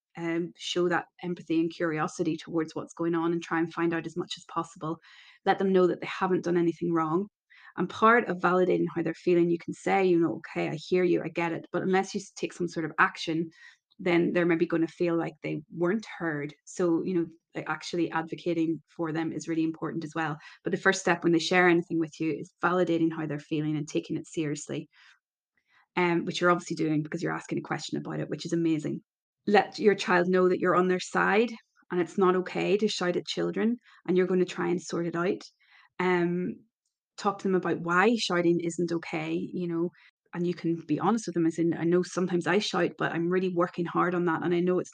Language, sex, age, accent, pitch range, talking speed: English, female, 20-39, Irish, 165-180 Hz, 230 wpm